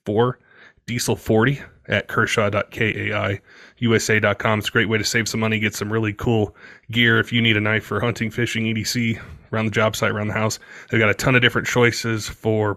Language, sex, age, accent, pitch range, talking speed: English, male, 30-49, American, 105-125 Hz, 195 wpm